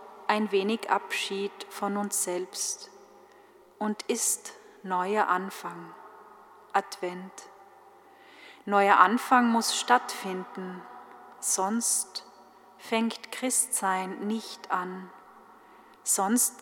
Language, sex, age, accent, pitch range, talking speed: German, female, 30-49, German, 190-240 Hz, 75 wpm